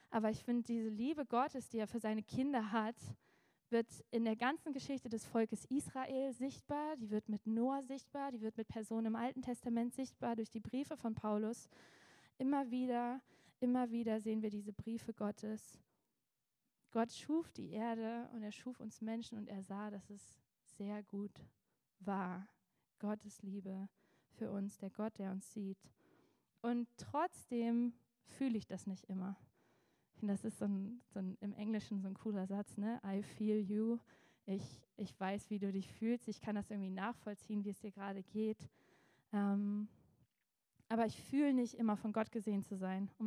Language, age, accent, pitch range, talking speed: German, 20-39, German, 205-235 Hz, 175 wpm